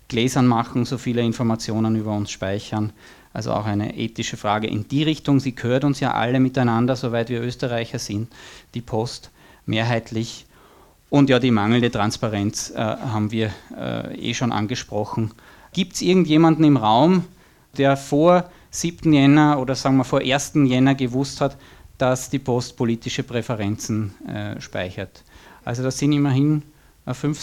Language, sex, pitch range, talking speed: German, male, 115-145 Hz, 155 wpm